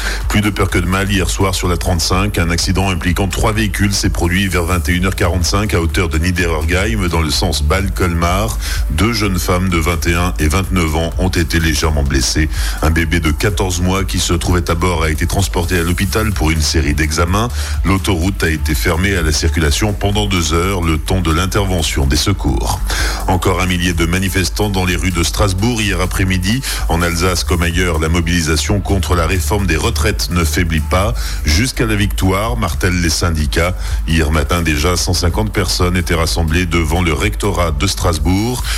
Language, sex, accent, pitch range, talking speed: French, male, French, 80-95 Hz, 185 wpm